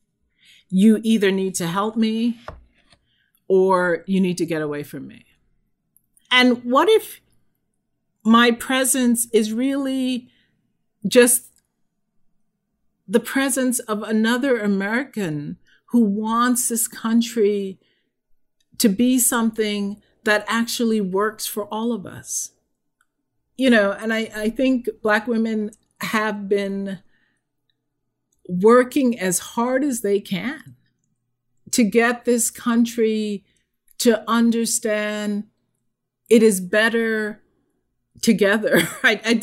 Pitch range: 195-235 Hz